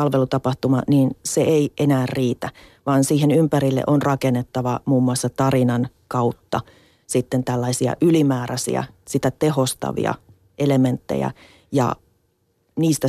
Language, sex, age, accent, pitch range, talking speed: Finnish, female, 30-49, native, 125-150 Hz, 105 wpm